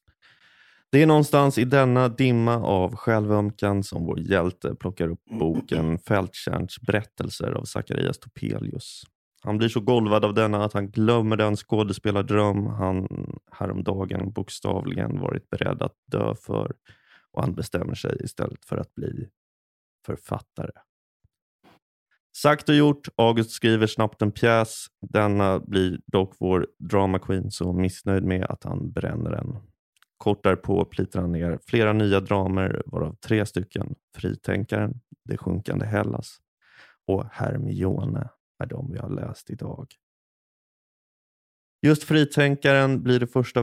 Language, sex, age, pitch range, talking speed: English, male, 30-49, 95-130 Hz, 130 wpm